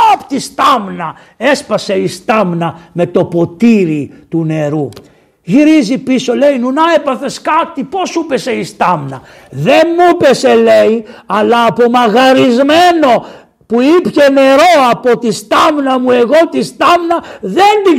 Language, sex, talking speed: Greek, male, 135 wpm